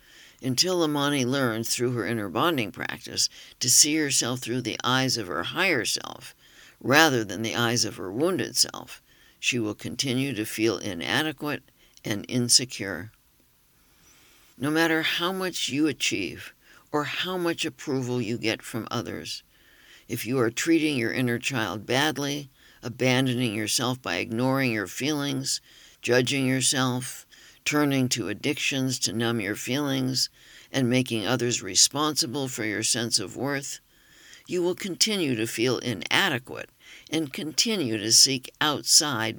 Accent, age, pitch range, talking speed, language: American, 60-79, 120-145 Hz, 140 wpm, English